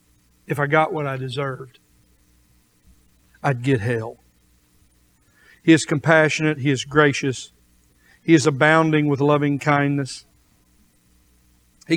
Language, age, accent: English, 50-69, American